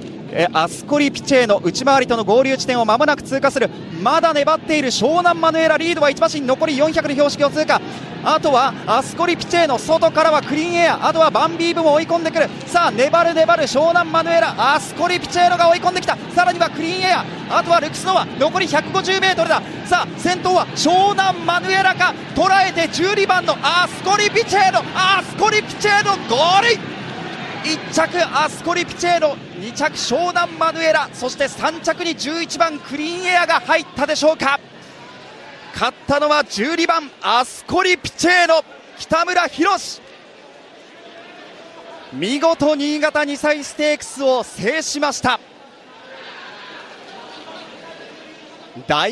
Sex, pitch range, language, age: male, 280-345 Hz, Japanese, 40-59